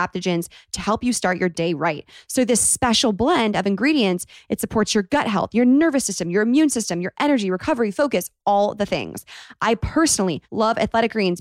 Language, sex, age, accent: English, female, 20-39, American